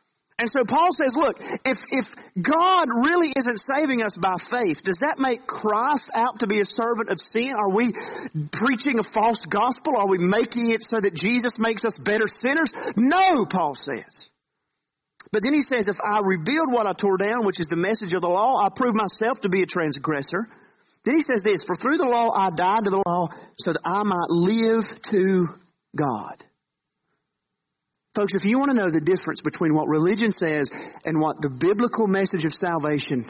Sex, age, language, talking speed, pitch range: male, 40-59, English, 195 wpm, 165-225 Hz